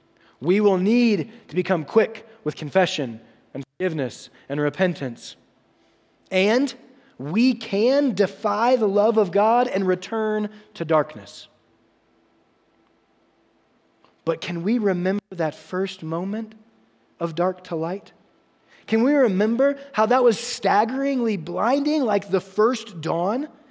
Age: 20-39